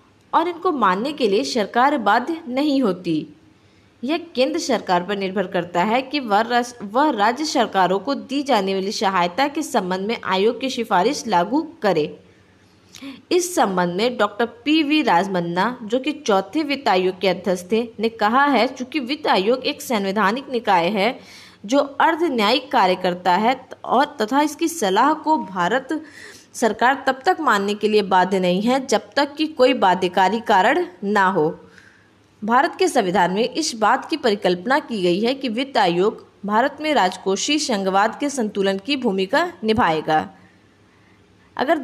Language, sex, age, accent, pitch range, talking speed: Hindi, female, 20-39, native, 195-280 Hz, 160 wpm